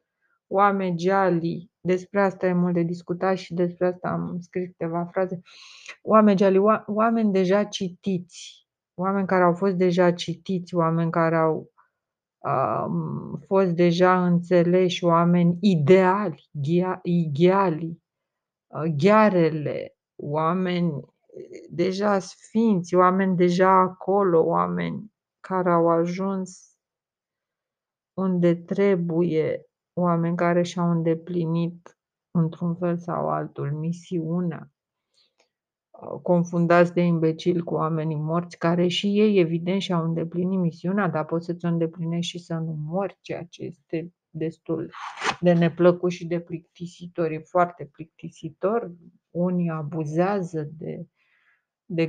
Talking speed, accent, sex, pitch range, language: 110 wpm, native, female, 165-185 Hz, Romanian